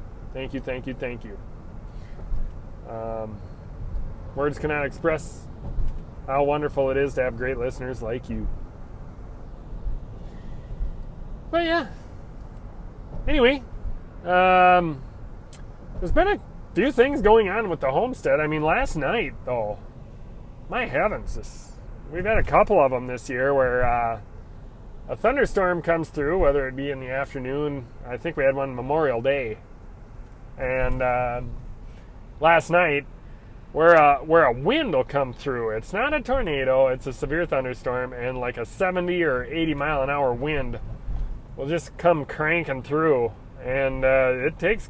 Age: 30-49